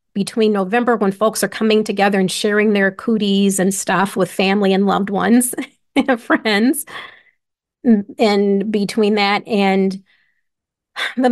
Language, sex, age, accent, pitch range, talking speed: English, female, 40-59, American, 200-235 Hz, 135 wpm